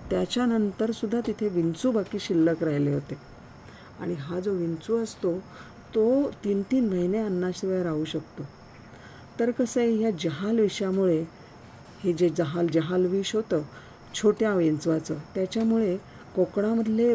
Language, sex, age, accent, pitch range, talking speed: Marathi, female, 50-69, native, 155-210 Hz, 125 wpm